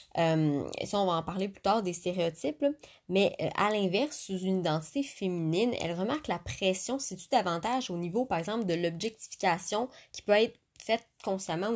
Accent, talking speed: Canadian, 185 wpm